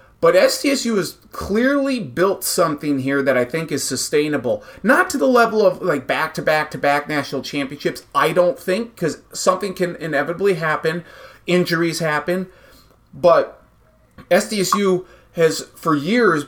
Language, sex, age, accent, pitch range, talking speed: English, male, 30-49, American, 150-225 Hz, 145 wpm